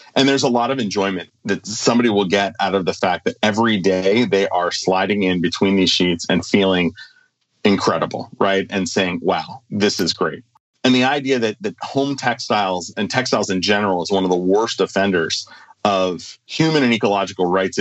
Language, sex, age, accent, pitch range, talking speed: English, male, 40-59, American, 95-130 Hz, 190 wpm